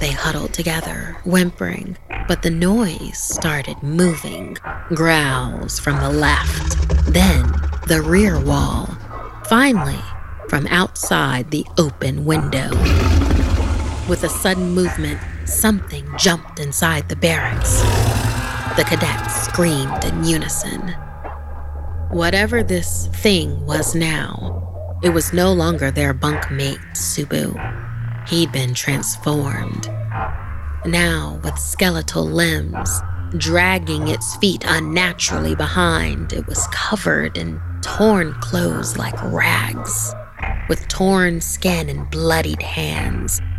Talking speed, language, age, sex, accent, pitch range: 105 wpm, English, 30-49, female, American, 80-135 Hz